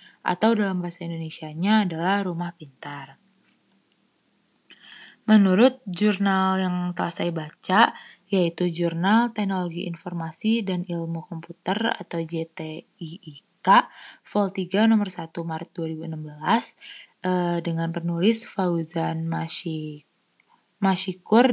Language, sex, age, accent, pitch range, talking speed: Indonesian, female, 20-39, native, 170-215 Hz, 90 wpm